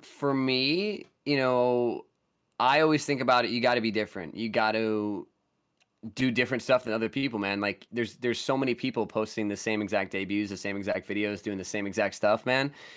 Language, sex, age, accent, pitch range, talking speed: English, male, 20-39, American, 110-135 Hz, 210 wpm